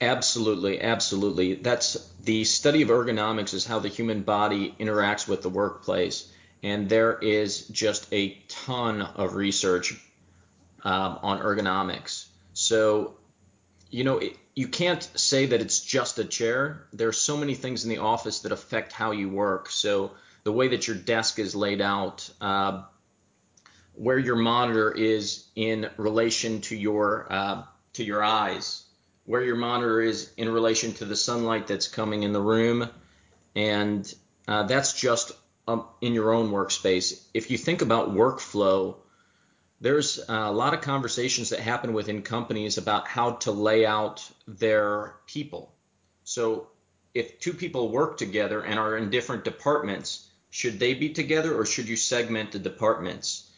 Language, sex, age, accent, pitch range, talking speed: English, male, 30-49, American, 100-115 Hz, 155 wpm